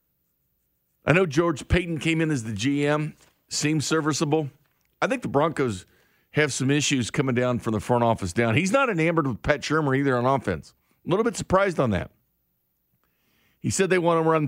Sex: male